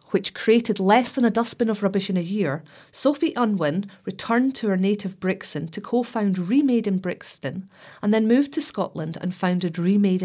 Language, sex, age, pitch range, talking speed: English, female, 40-59, 175-225 Hz, 180 wpm